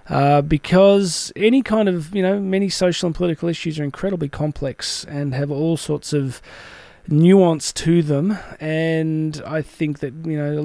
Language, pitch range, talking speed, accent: English, 145-165 Hz, 170 wpm, Australian